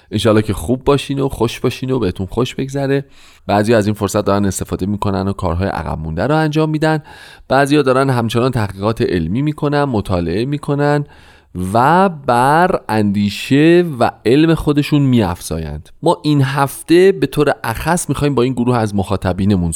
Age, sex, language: 30-49, male, Persian